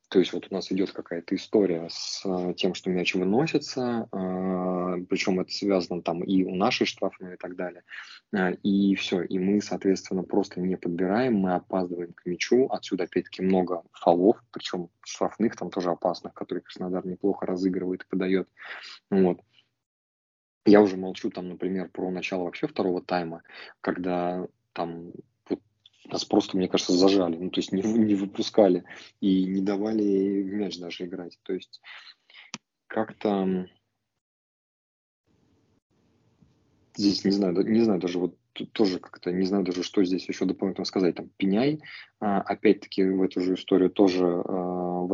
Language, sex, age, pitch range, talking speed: Russian, male, 20-39, 90-100 Hz, 145 wpm